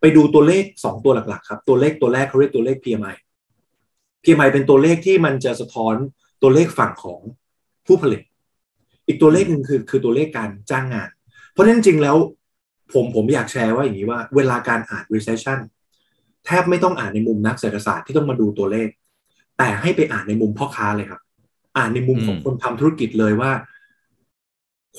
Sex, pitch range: male, 110-155 Hz